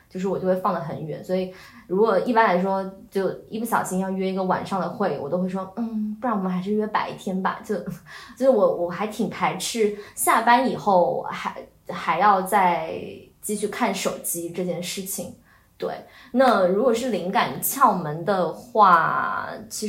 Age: 20-39